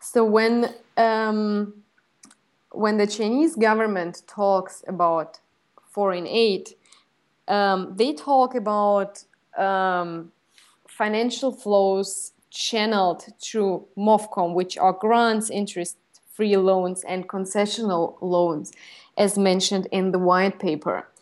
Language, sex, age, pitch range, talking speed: English, female, 20-39, 180-215 Hz, 100 wpm